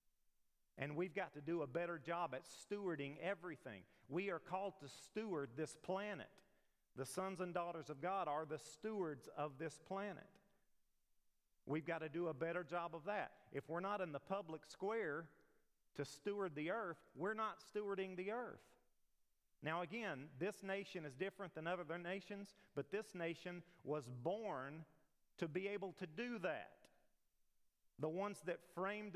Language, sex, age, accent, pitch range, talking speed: English, male, 40-59, American, 155-195 Hz, 165 wpm